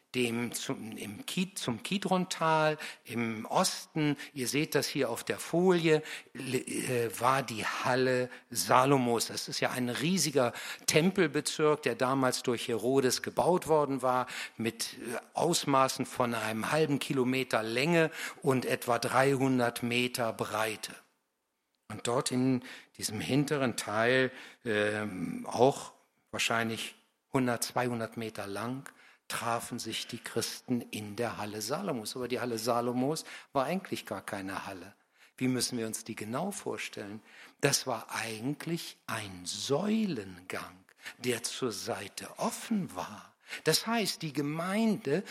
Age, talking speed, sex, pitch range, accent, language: 60-79, 120 wpm, male, 115-155 Hz, German, German